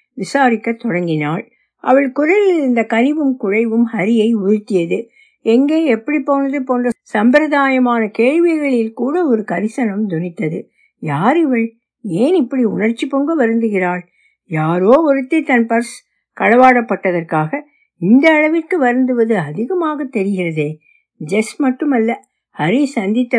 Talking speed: 105 wpm